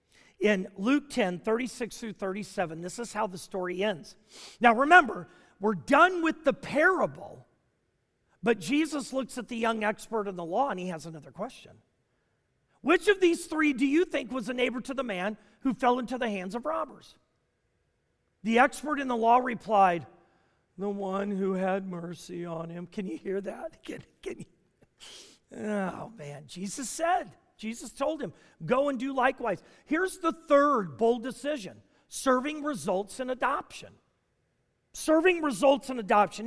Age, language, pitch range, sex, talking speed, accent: 40-59, English, 200-280 Hz, male, 155 wpm, American